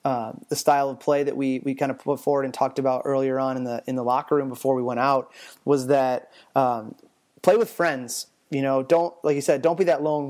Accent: American